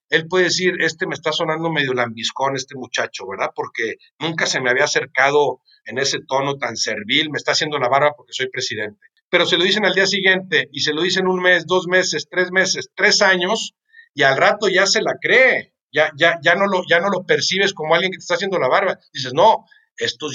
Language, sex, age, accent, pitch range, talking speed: Spanish, male, 50-69, Mexican, 145-185 Hz, 215 wpm